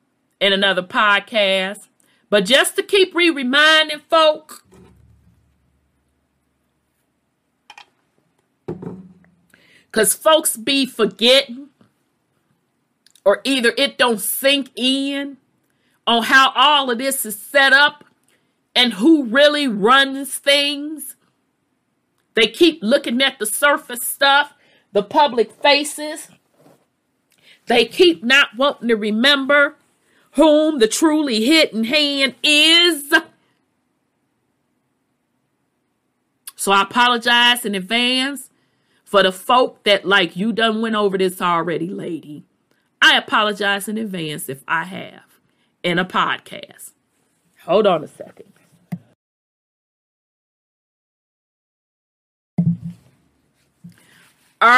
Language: English